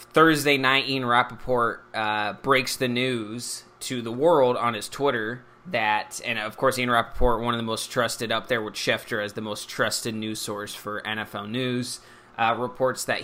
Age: 20-39